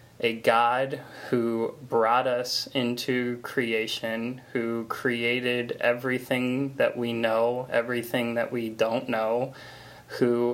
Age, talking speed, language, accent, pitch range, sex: 20-39, 110 wpm, English, American, 115-125 Hz, male